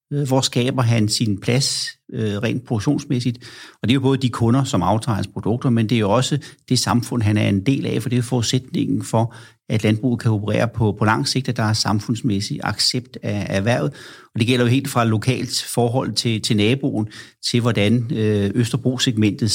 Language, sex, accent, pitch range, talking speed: Danish, male, native, 115-135 Hz, 200 wpm